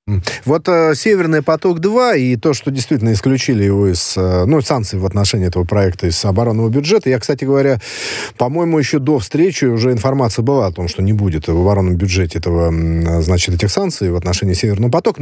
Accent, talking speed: native, 180 wpm